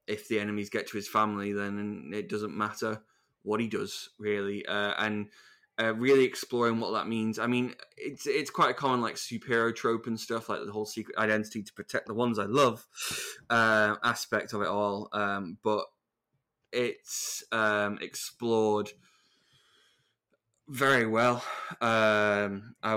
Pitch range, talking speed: 105-115 Hz, 155 wpm